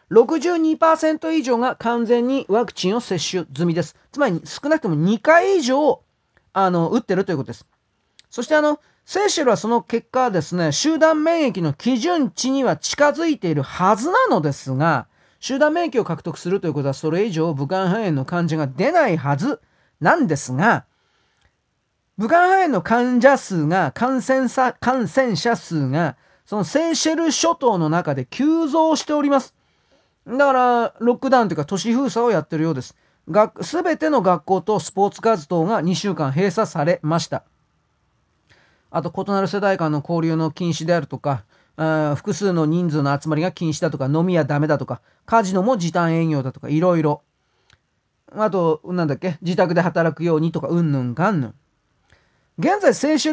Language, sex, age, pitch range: Japanese, male, 40-59, 160-255 Hz